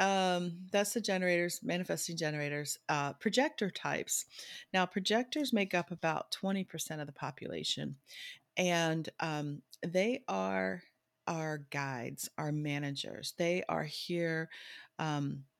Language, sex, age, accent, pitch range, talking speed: English, female, 40-59, American, 140-175 Hz, 115 wpm